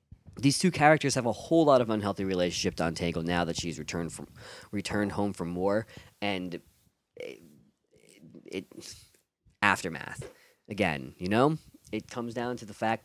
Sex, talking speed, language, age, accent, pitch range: male, 160 wpm, English, 30-49, American, 90-130 Hz